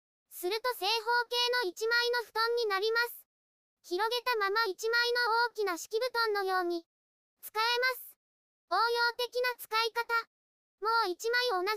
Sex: male